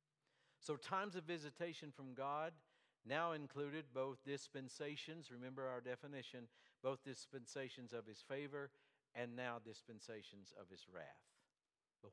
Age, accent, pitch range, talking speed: 60-79, American, 105-135 Hz, 125 wpm